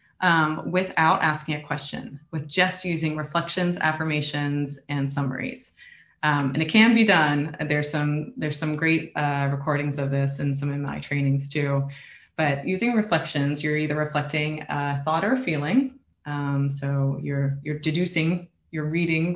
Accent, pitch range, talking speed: American, 145-170 Hz, 160 wpm